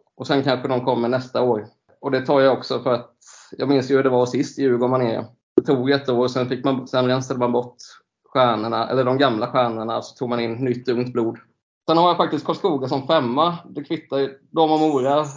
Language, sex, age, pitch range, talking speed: Swedish, male, 20-39, 125-150 Hz, 225 wpm